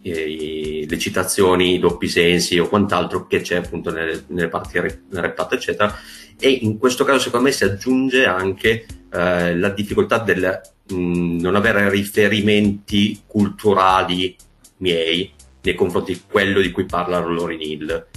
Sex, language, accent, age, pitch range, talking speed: male, Italian, native, 30-49, 85-100 Hz, 150 wpm